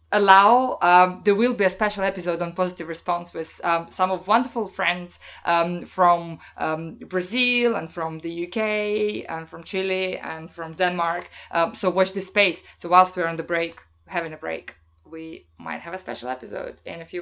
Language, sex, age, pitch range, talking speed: English, female, 20-39, 165-215 Hz, 190 wpm